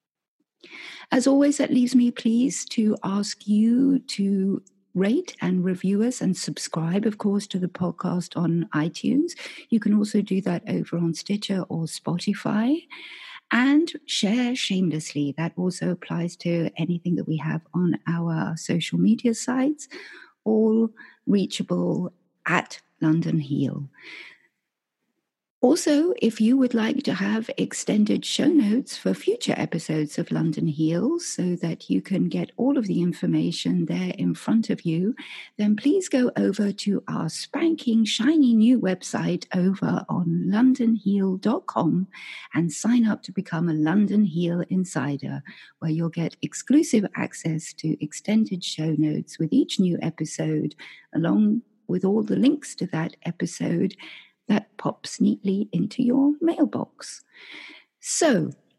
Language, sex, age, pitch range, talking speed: English, female, 50-69, 170-245 Hz, 135 wpm